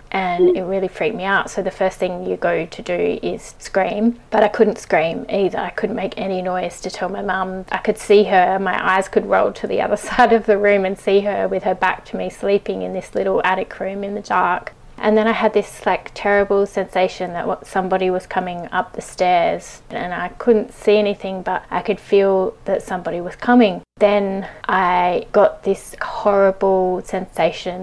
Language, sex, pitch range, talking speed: English, female, 185-210 Hz, 205 wpm